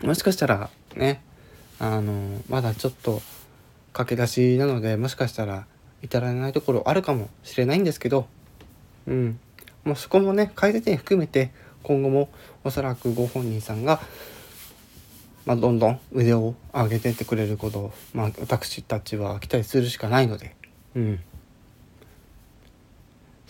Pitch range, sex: 110-130 Hz, male